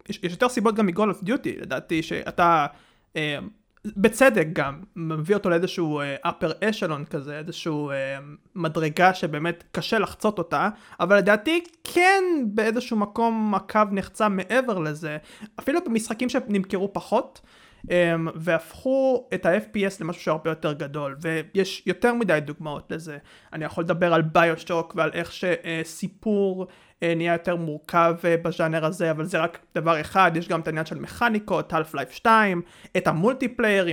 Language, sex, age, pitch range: Hebrew, male, 30-49, 160-220 Hz